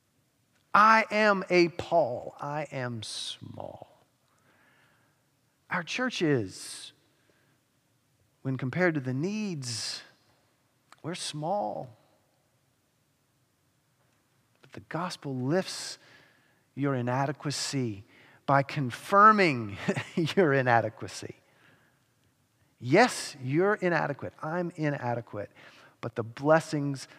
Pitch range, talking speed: 120-155 Hz, 75 wpm